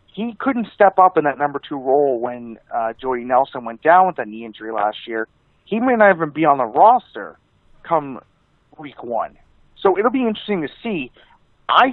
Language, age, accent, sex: English, 40-59, American, male